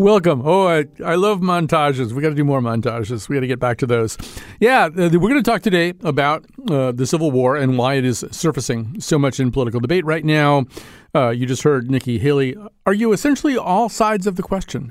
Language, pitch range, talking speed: English, 120-150 Hz, 220 wpm